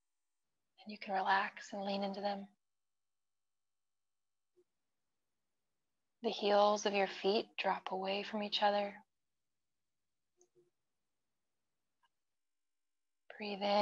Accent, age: American, 20-39